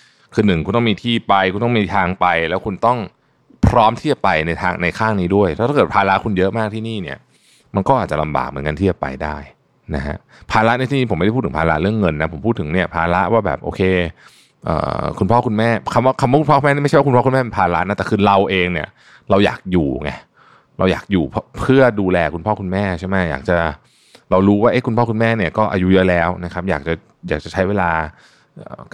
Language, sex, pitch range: Thai, male, 85-110 Hz